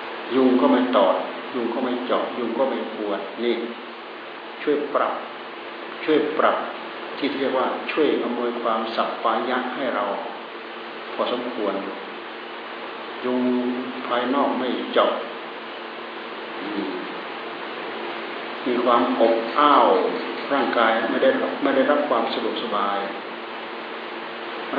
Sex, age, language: male, 60-79, Thai